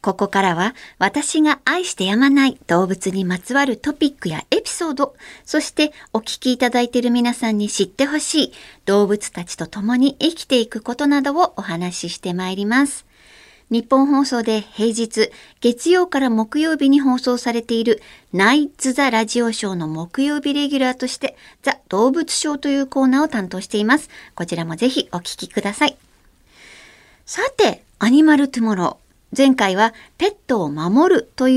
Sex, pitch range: male, 200-280 Hz